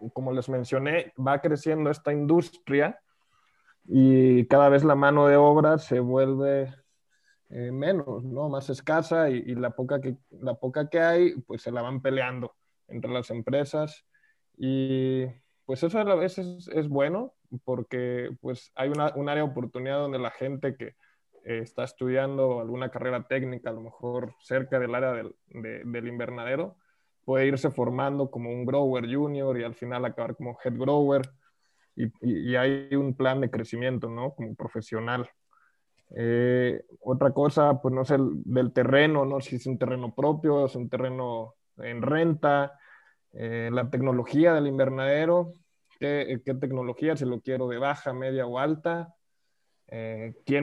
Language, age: Spanish, 20-39